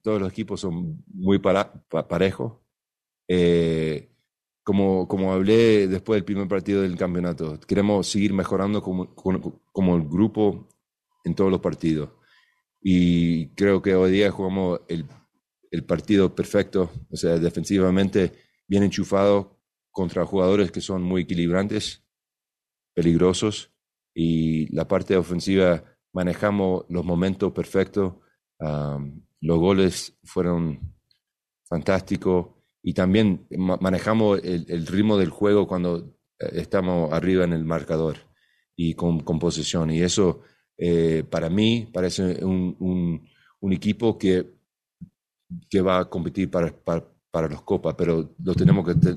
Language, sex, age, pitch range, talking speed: English, male, 40-59, 85-100 Hz, 130 wpm